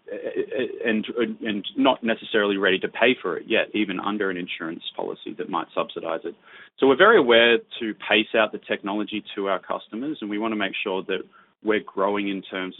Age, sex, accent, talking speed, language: 20-39, male, Australian, 195 wpm, English